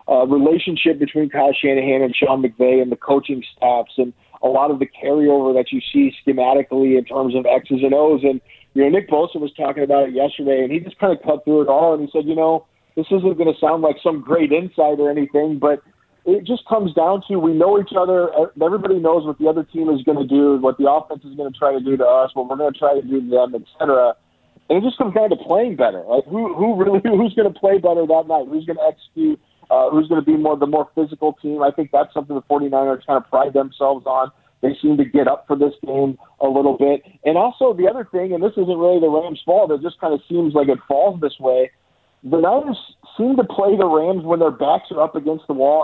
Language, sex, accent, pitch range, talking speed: English, male, American, 140-170 Hz, 255 wpm